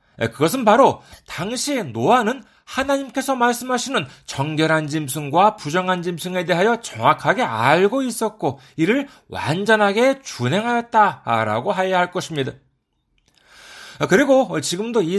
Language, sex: Korean, male